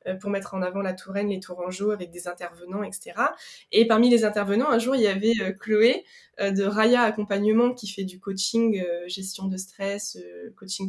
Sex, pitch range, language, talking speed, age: female, 195-240 Hz, French, 180 wpm, 20-39